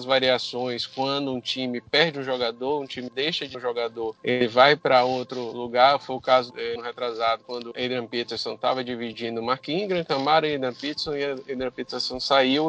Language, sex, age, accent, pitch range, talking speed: Portuguese, male, 20-39, Brazilian, 125-155 Hz, 175 wpm